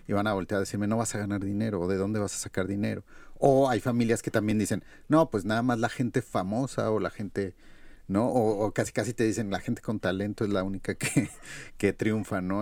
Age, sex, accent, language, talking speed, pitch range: 40-59, male, Mexican, Spanish, 245 wpm, 100-120 Hz